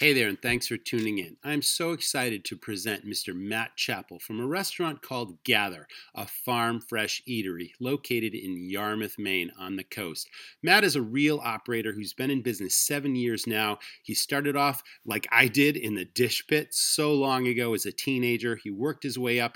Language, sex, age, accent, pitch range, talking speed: English, male, 40-59, American, 105-140 Hz, 195 wpm